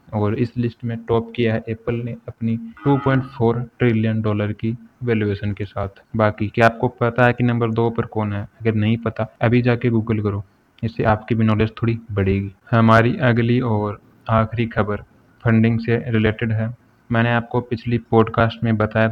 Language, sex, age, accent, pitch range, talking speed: Hindi, male, 20-39, native, 110-120 Hz, 175 wpm